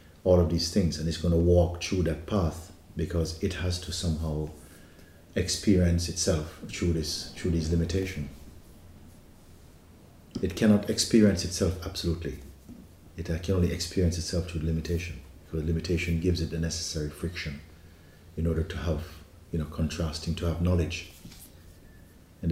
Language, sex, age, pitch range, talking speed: English, male, 50-69, 80-90 Hz, 145 wpm